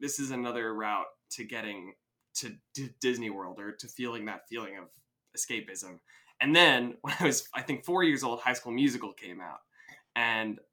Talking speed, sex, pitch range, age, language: 180 wpm, male, 110-130 Hz, 20-39, English